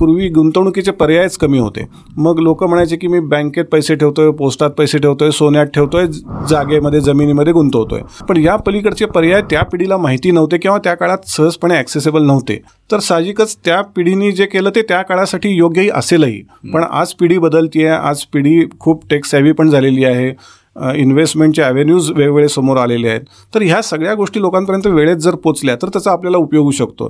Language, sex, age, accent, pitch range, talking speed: Marathi, male, 40-59, native, 145-180 Hz, 140 wpm